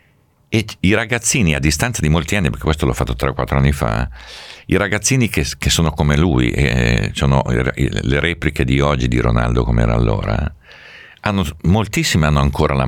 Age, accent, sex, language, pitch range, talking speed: 50-69, native, male, Italian, 65-75 Hz, 170 wpm